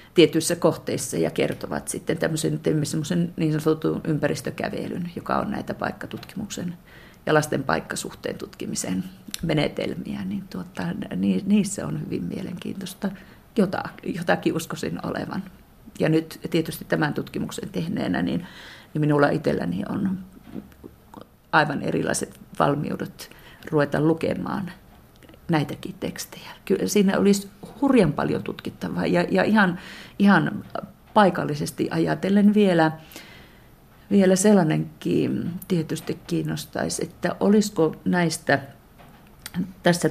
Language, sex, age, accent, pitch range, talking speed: Finnish, female, 40-59, native, 155-195 Hz, 95 wpm